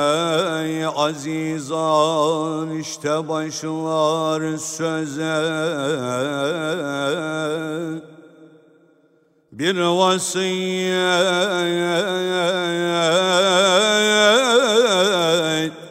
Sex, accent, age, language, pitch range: male, native, 60-79, Turkish, 130-160 Hz